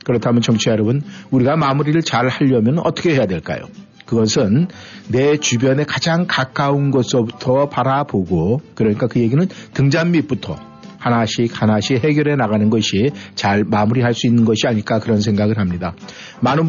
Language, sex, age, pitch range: Korean, male, 50-69, 110-160 Hz